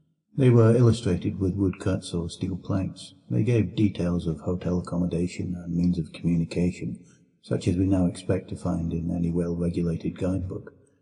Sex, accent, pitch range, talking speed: male, British, 85-100 Hz, 160 wpm